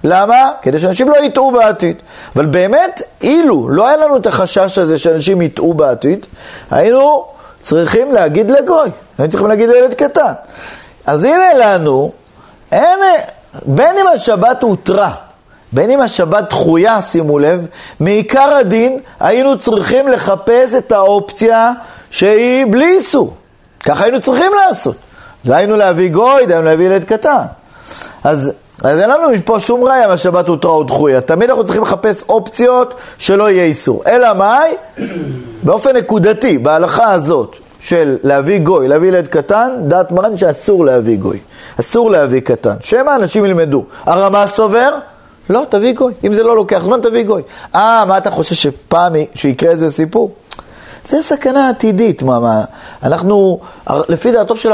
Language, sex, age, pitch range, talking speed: Hebrew, male, 40-59, 175-255 Hz, 135 wpm